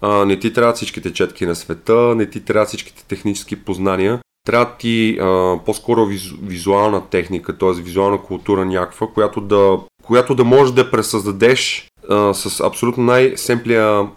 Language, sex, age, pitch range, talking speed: Bulgarian, male, 30-49, 100-125 Hz, 155 wpm